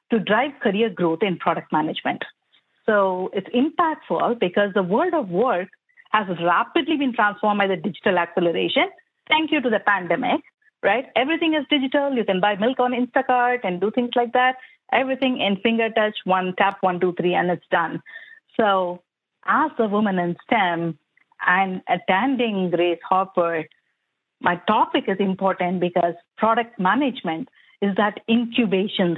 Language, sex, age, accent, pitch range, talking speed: English, female, 50-69, Indian, 175-230 Hz, 155 wpm